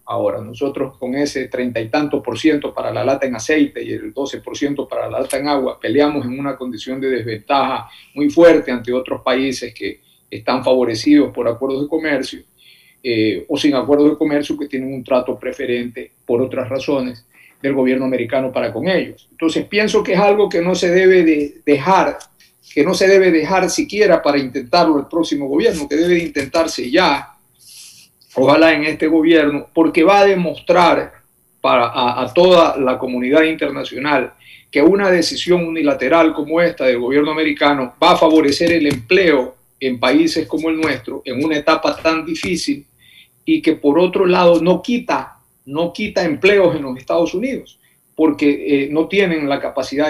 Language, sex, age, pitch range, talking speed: Spanish, male, 50-69, 135-165 Hz, 170 wpm